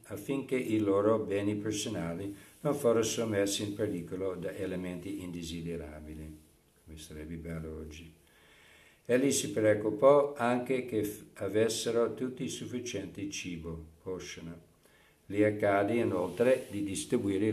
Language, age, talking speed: Italian, 60-79, 115 wpm